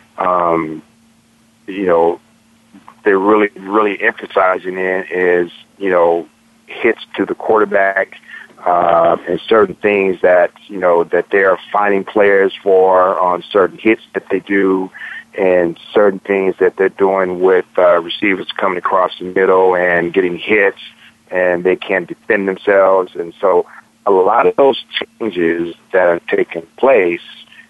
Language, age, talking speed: English, 40-59, 145 wpm